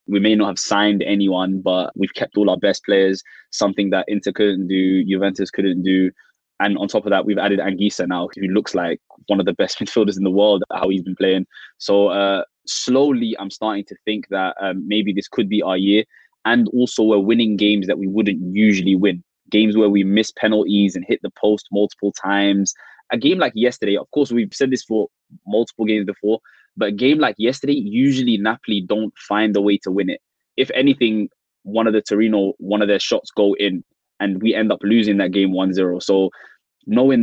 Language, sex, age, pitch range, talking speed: English, male, 20-39, 100-110 Hz, 210 wpm